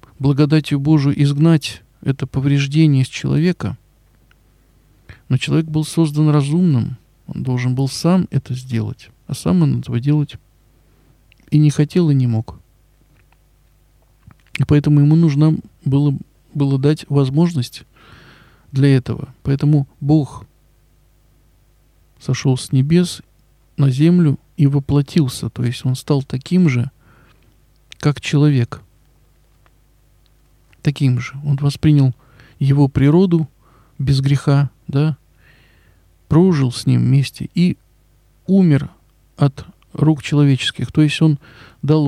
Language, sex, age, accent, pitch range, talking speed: Russian, male, 50-69, native, 125-155 Hz, 110 wpm